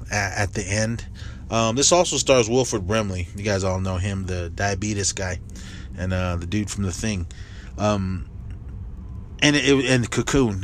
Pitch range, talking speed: 95-125 Hz, 165 wpm